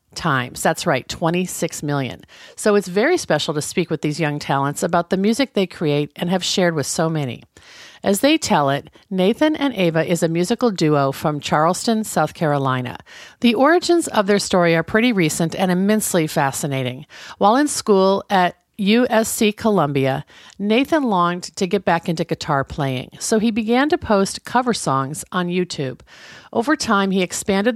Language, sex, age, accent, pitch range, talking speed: English, female, 50-69, American, 160-220 Hz, 170 wpm